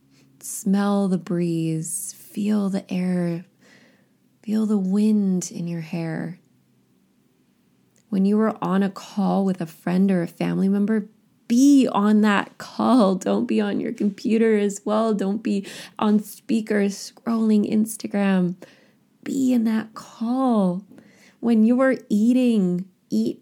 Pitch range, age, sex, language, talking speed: 185-220 Hz, 20-39, female, English, 130 wpm